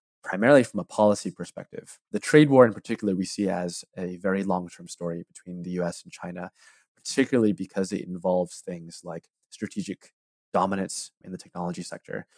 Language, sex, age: English, male, 20-39